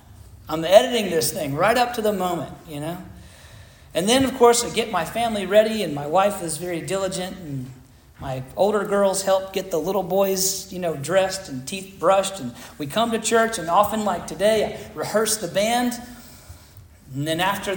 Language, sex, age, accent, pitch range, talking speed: English, male, 40-59, American, 160-220 Hz, 195 wpm